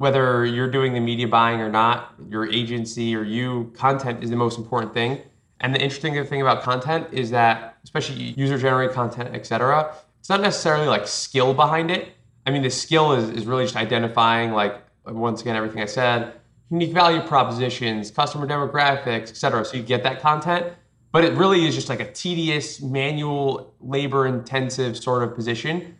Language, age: English, 20-39